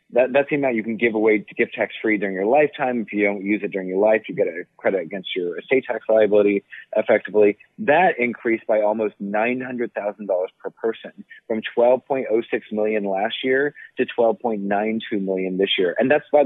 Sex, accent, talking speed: male, American, 190 wpm